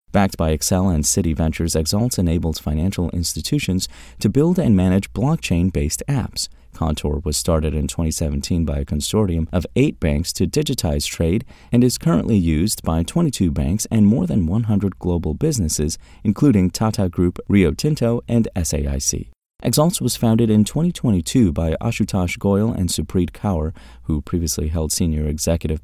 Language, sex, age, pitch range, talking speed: English, male, 30-49, 80-110 Hz, 155 wpm